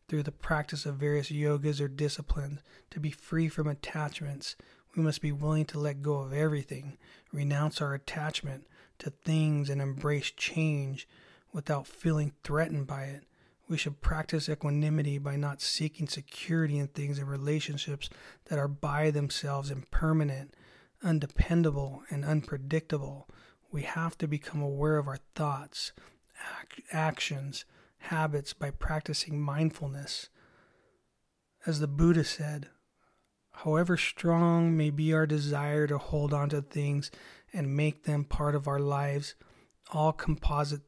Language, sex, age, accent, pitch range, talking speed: English, male, 30-49, American, 140-155 Hz, 135 wpm